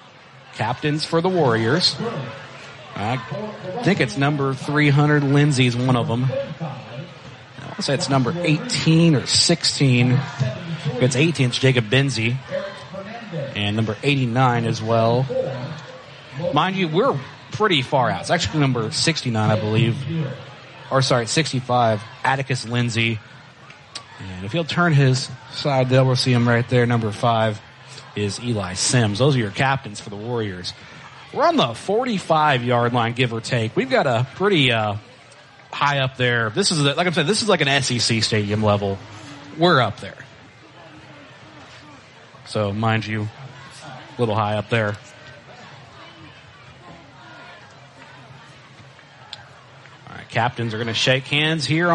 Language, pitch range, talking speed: English, 120-150 Hz, 140 wpm